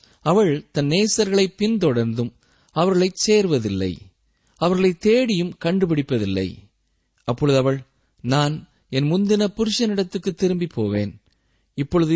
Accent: native